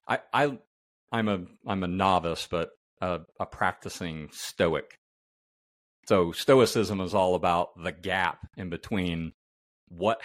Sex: male